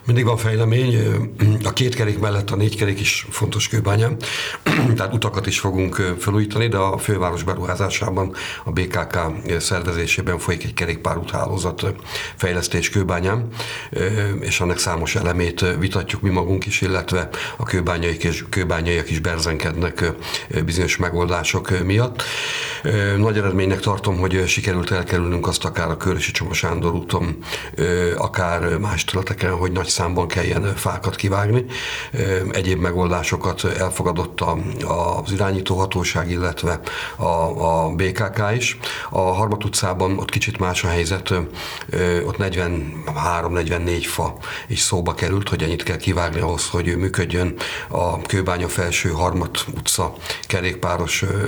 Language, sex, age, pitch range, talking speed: Hungarian, male, 60-79, 90-105 Hz, 120 wpm